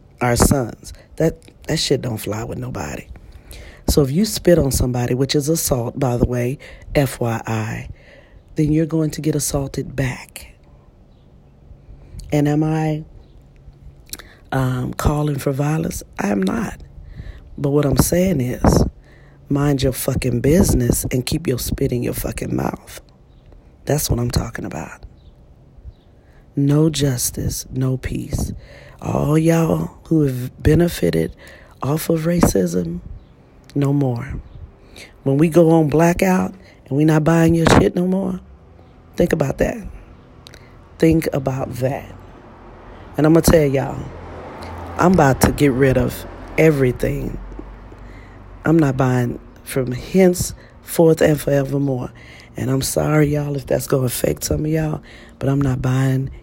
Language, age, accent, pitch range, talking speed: English, 40-59, American, 115-155 Hz, 140 wpm